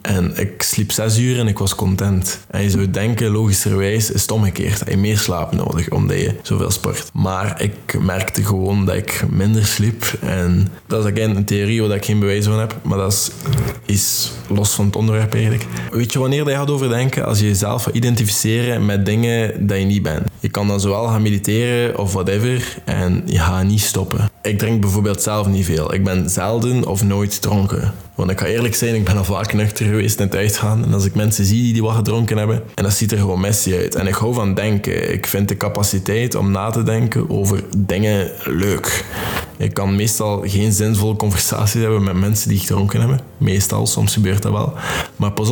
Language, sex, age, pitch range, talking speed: Dutch, male, 20-39, 95-110 Hz, 210 wpm